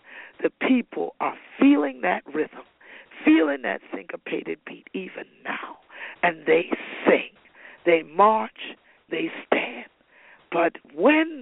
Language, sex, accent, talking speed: English, female, American, 110 wpm